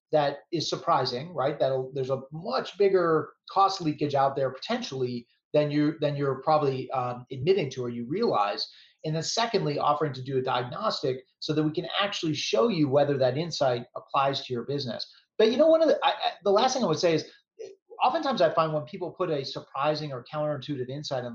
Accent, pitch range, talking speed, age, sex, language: American, 135-175 Hz, 210 wpm, 30-49, male, English